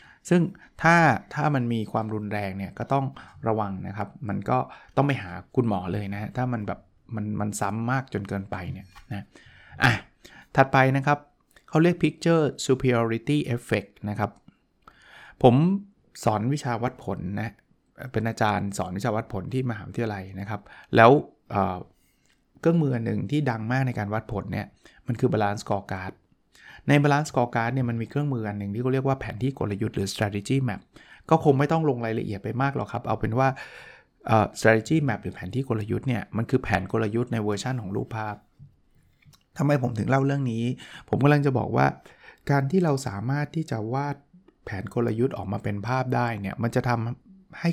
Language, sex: Thai, male